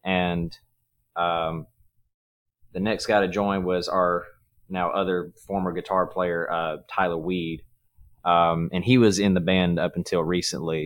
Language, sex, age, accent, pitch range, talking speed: English, male, 20-39, American, 85-95 Hz, 150 wpm